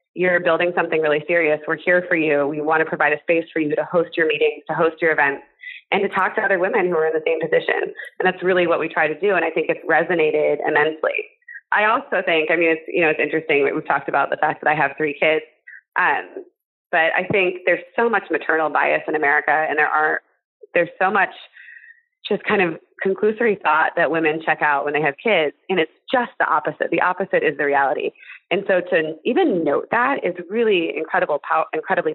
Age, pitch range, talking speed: 30-49, 160-230 Hz, 230 wpm